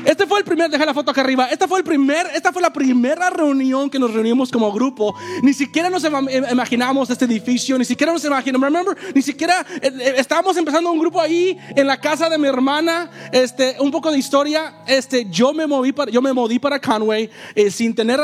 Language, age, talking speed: English, 30-49, 215 wpm